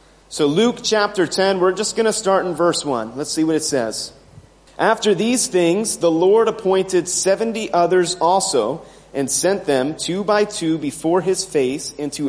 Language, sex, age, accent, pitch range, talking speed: English, male, 30-49, American, 170-210 Hz, 175 wpm